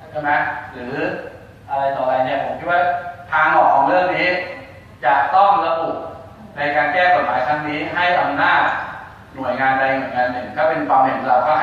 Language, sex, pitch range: Thai, male, 120-150 Hz